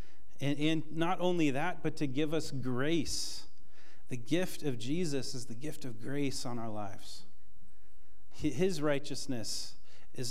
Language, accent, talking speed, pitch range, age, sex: English, American, 145 wpm, 105-145 Hz, 40-59, male